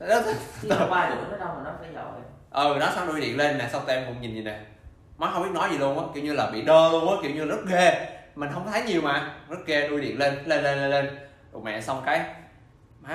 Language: Vietnamese